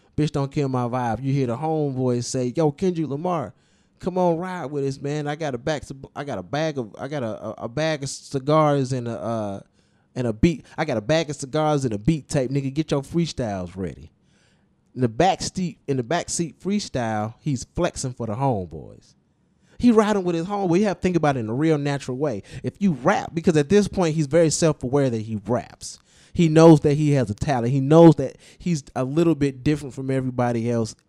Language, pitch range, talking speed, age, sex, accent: English, 125-160 Hz, 230 wpm, 20-39, male, American